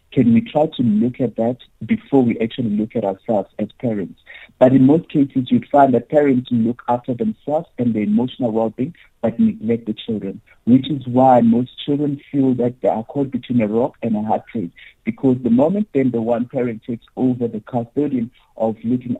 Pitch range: 115-145 Hz